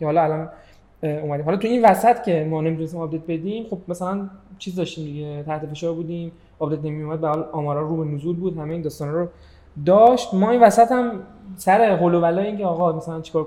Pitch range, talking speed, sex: 155-190 Hz, 200 wpm, male